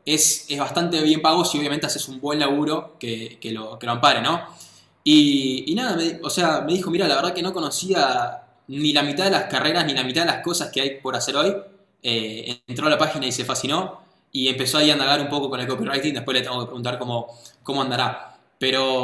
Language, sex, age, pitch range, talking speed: Spanish, male, 20-39, 130-180 Hz, 245 wpm